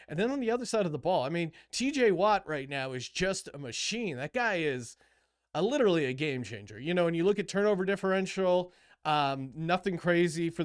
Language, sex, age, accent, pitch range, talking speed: English, male, 30-49, American, 155-200 Hz, 220 wpm